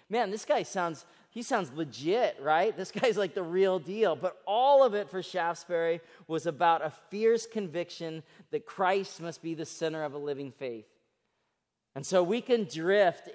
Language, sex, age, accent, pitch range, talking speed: English, male, 30-49, American, 140-170 Hz, 180 wpm